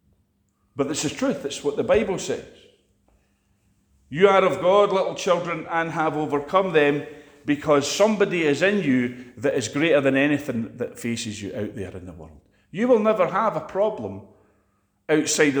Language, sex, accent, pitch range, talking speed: English, male, British, 115-175 Hz, 170 wpm